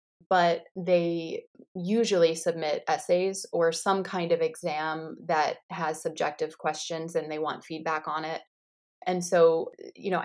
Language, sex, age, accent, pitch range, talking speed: English, female, 20-39, American, 170-205 Hz, 140 wpm